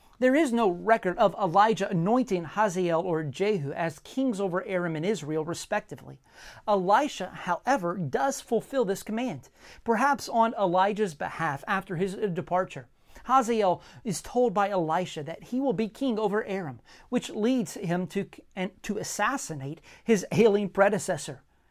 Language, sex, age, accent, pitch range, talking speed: English, male, 40-59, American, 170-230 Hz, 140 wpm